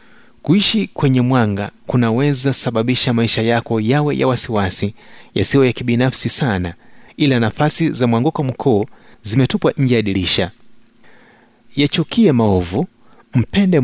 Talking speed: 115 wpm